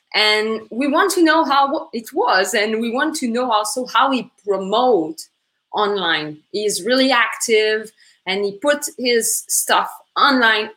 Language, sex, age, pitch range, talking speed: English, female, 20-39, 205-275 Hz, 155 wpm